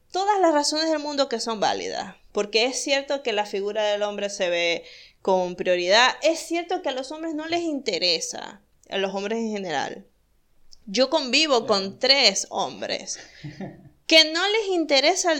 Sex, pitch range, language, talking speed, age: female, 200-290 Hz, Spanish, 170 wpm, 20-39